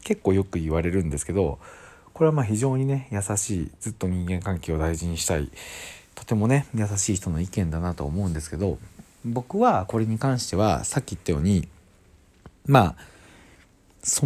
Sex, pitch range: male, 85-115 Hz